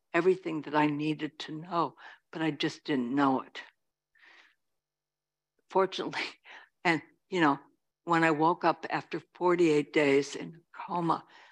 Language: English